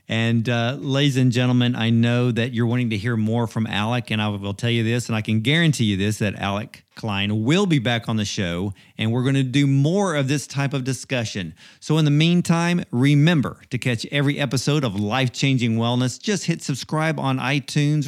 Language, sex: English, male